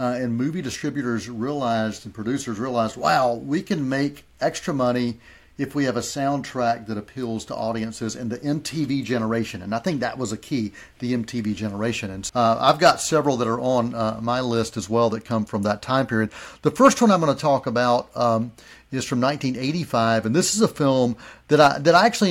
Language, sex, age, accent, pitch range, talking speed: English, male, 40-59, American, 115-135 Hz, 210 wpm